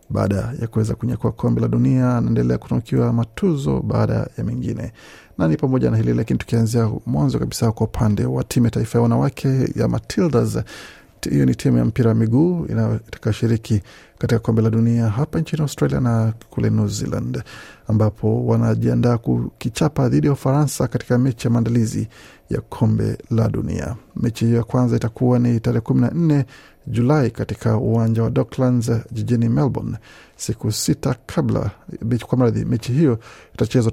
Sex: male